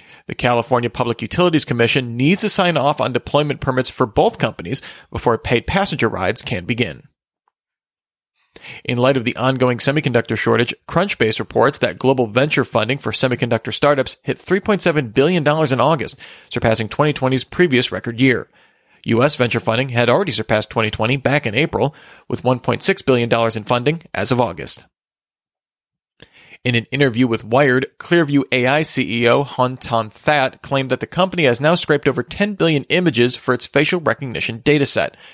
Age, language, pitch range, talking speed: 40-59, English, 115-145 Hz, 155 wpm